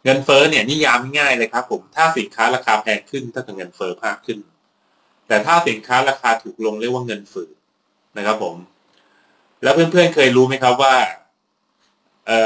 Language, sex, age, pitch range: Thai, male, 20-39, 105-130 Hz